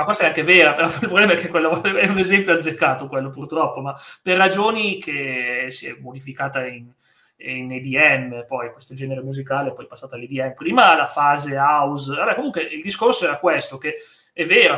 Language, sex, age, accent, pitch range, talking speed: Italian, male, 30-49, native, 130-170 Hz, 185 wpm